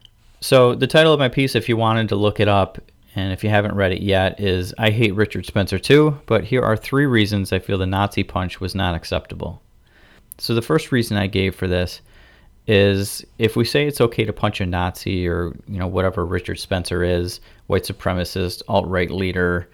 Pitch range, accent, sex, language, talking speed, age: 95-115 Hz, American, male, English, 205 wpm, 30-49